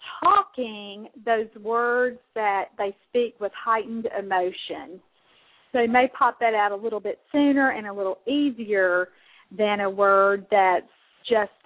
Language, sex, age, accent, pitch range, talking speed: English, female, 40-59, American, 195-245 Hz, 145 wpm